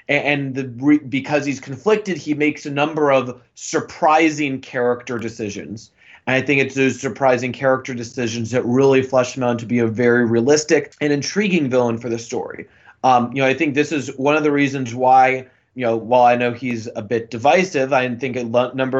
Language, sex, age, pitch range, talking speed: English, male, 30-49, 120-145 Hz, 195 wpm